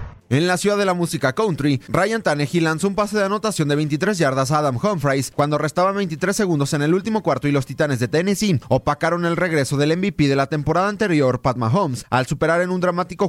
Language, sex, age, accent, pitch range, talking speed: Spanish, male, 30-49, Mexican, 135-180 Hz, 220 wpm